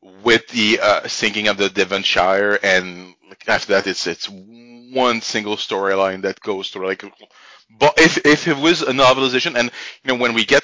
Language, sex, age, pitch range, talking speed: English, male, 30-49, 100-125 Hz, 180 wpm